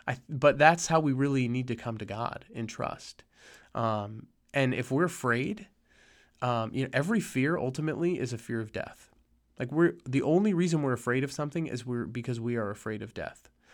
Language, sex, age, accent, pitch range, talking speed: English, male, 30-49, American, 115-140 Hz, 195 wpm